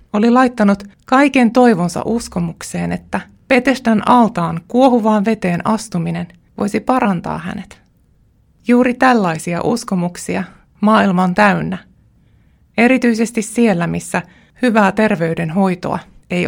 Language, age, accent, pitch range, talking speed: Finnish, 20-39, native, 175-235 Hz, 90 wpm